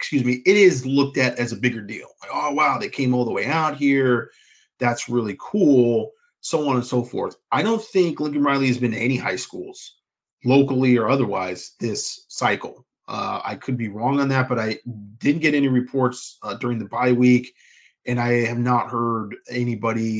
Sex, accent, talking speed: male, American, 200 wpm